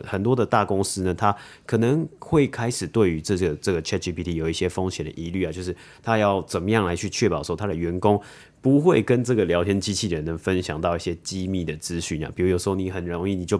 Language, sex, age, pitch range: Chinese, male, 20-39, 85-110 Hz